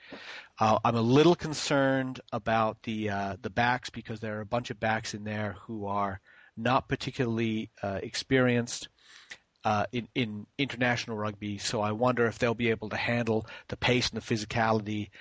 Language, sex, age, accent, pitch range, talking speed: English, male, 40-59, American, 105-120 Hz, 180 wpm